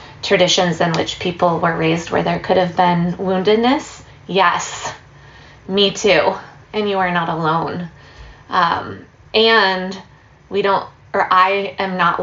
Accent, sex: American, female